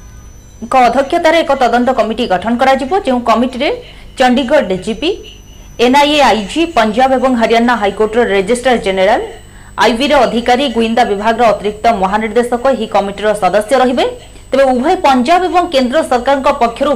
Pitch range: 210-265 Hz